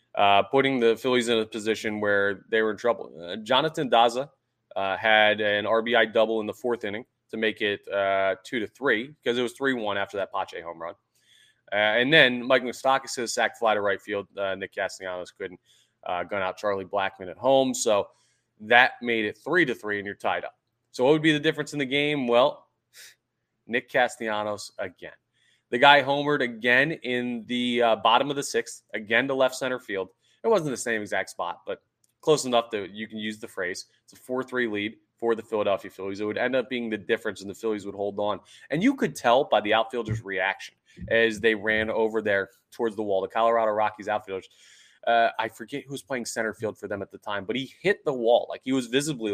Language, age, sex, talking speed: English, 20-39, male, 220 wpm